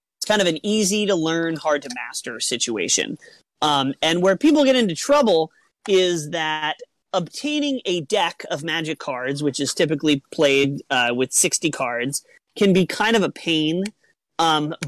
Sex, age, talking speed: male, 30-49, 150 wpm